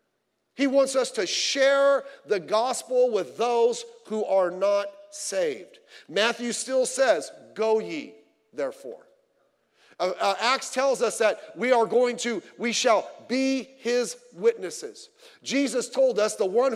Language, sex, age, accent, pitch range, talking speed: English, male, 40-59, American, 205-275 Hz, 140 wpm